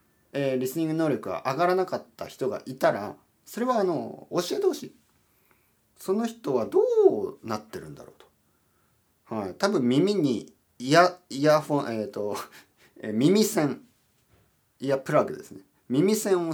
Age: 40-59